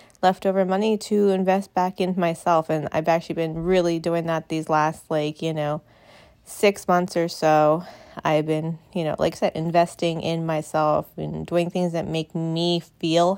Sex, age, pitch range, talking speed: female, 20-39, 165-190 Hz, 180 wpm